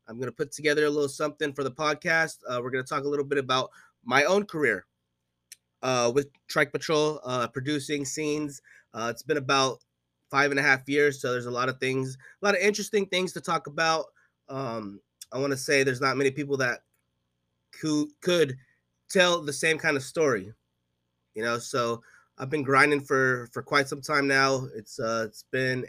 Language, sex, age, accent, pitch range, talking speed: English, male, 20-39, American, 120-155 Hz, 200 wpm